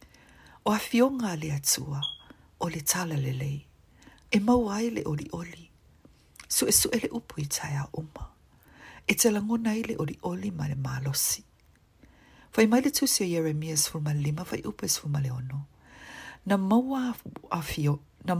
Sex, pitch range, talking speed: female, 145-225 Hz, 135 wpm